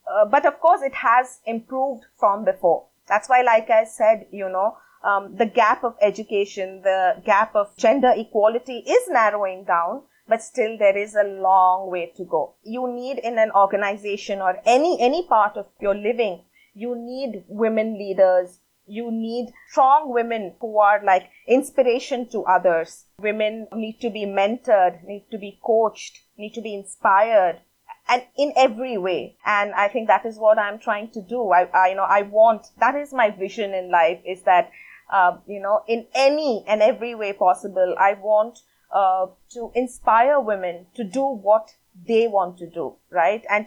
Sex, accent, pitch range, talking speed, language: female, Indian, 195-245 Hz, 175 wpm, English